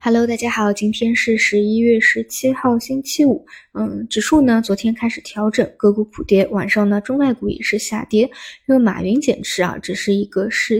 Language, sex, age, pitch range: Chinese, female, 20-39, 195-225 Hz